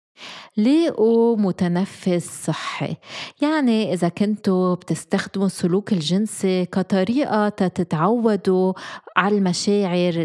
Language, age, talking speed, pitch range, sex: Arabic, 20-39, 80 wpm, 175-215 Hz, female